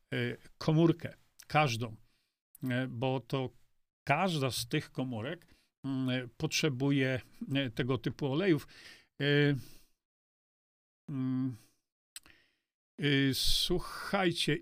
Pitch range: 130-160 Hz